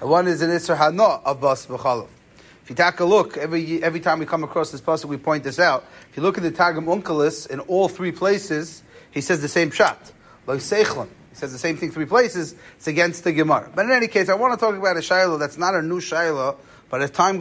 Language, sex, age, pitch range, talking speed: English, male, 30-49, 145-180 Hz, 250 wpm